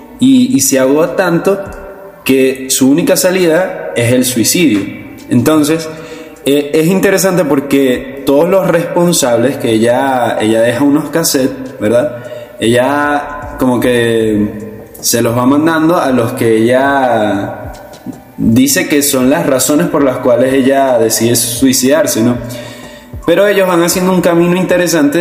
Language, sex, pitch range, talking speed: Spanish, male, 120-155 Hz, 135 wpm